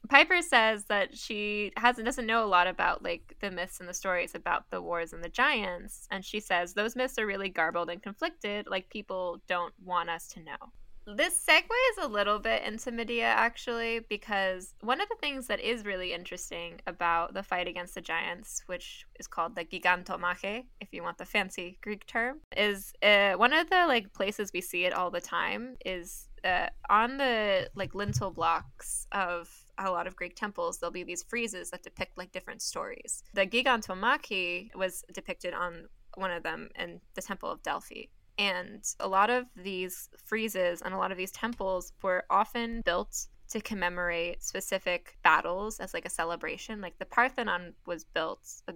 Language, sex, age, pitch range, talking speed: English, female, 10-29, 180-230 Hz, 185 wpm